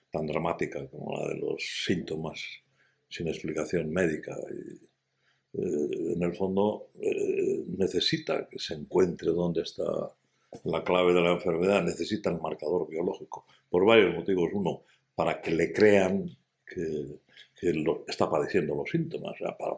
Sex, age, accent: male, 60-79, Spanish